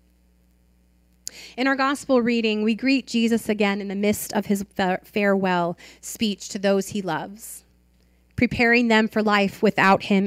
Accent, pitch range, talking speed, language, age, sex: American, 170-235 Hz, 150 wpm, English, 30-49, female